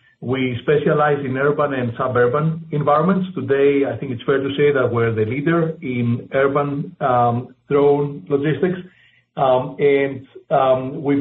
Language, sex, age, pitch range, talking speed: English, male, 50-69, 120-145 Hz, 145 wpm